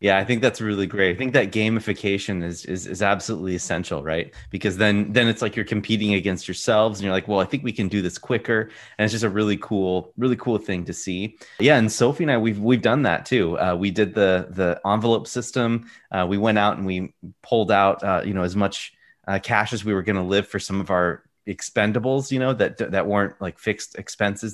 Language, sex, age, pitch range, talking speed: English, male, 30-49, 95-115 Hz, 240 wpm